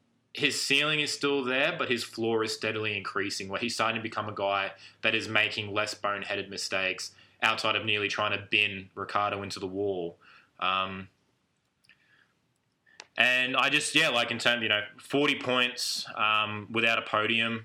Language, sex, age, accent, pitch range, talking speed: English, male, 20-39, Australian, 95-120 Hz, 170 wpm